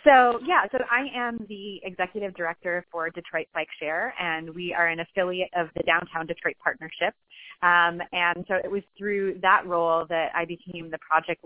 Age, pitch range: 30-49, 160-185 Hz